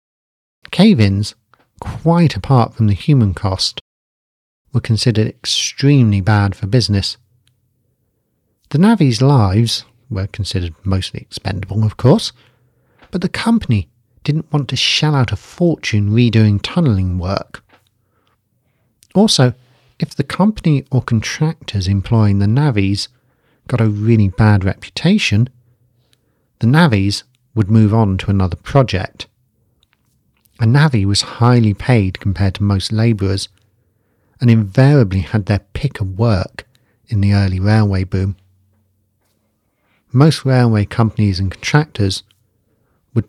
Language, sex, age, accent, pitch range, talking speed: English, male, 40-59, British, 100-125 Hz, 115 wpm